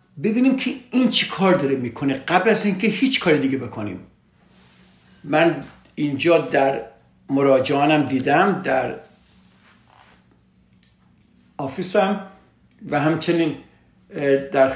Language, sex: Persian, male